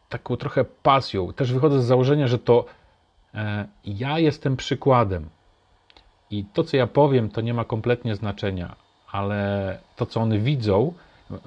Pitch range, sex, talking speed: 100-125 Hz, male, 140 wpm